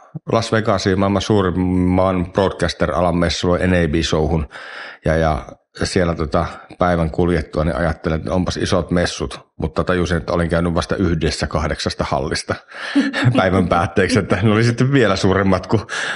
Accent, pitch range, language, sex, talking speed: native, 85-105 Hz, Finnish, male, 140 wpm